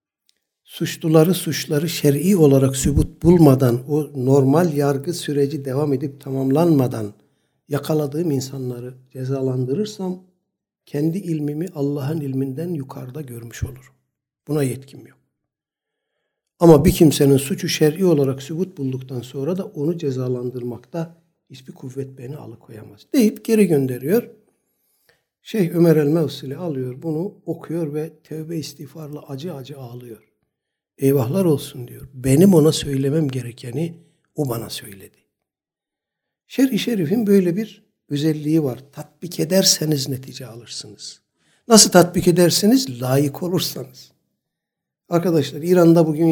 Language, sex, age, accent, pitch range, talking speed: Turkish, male, 60-79, native, 135-170 Hz, 110 wpm